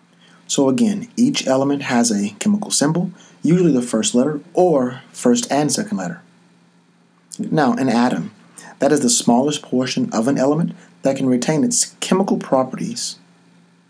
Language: English